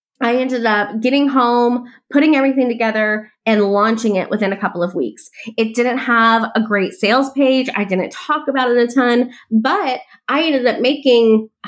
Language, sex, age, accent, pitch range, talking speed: English, female, 20-39, American, 220-270 Hz, 185 wpm